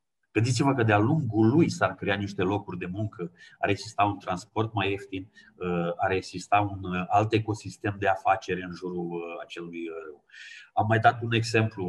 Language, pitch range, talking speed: Romanian, 95-120 Hz, 165 wpm